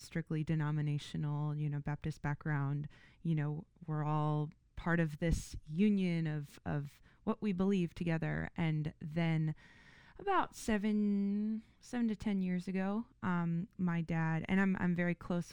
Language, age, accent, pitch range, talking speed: English, 20-39, American, 150-175 Hz, 145 wpm